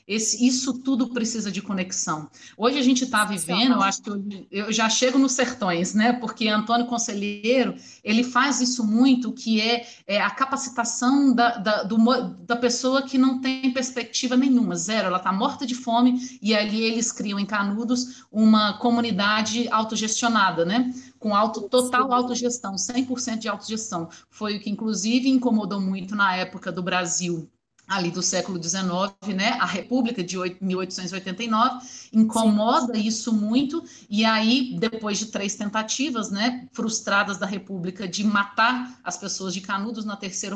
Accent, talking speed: Brazilian, 155 wpm